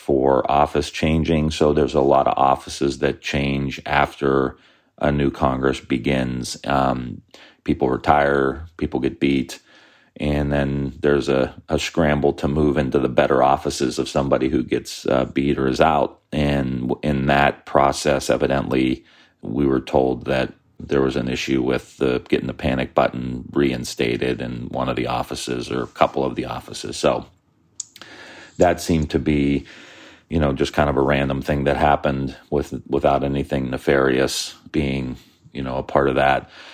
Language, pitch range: English, 65-75 Hz